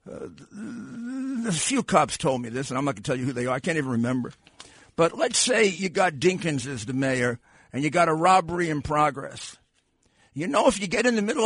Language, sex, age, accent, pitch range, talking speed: English, male, 50-69, American, 135-185 Hz, 235 wpm